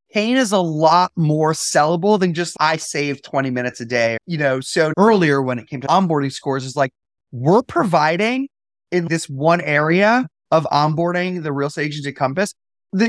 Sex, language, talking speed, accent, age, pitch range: male, English, 185 wpm, American, 30-49, 150-215 Hz